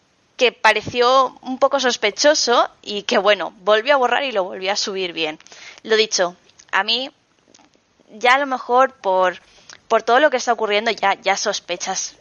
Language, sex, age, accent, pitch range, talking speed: Spanish, female, 20-39, Spanish, 185-230 Hz, 170 wpm